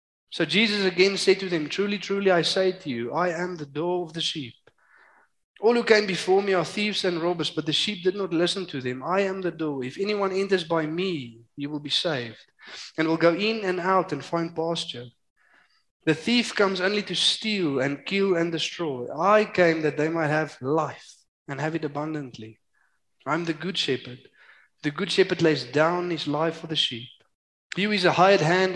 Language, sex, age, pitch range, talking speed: English, male, 20-39, 140-185 Hz, 210 wpm